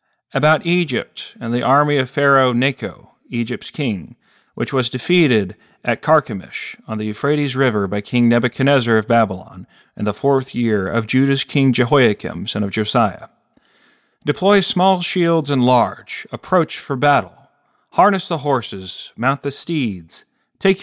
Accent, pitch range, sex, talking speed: American, 115-155 Hz, male, 145 wpm